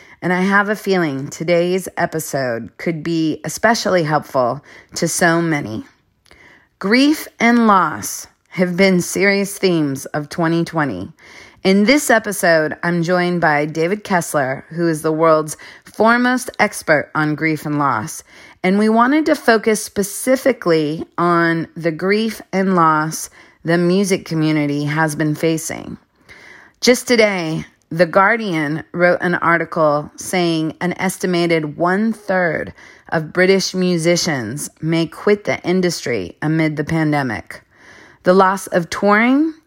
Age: 30-49